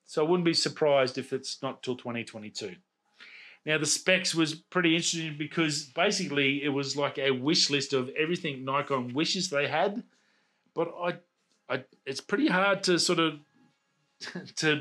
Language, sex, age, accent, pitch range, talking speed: English, male, 30-49, Australian, 130-155 Hz, 160 wpm